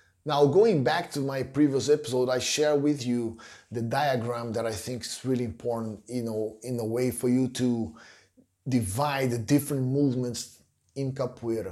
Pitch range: 125-150 Hz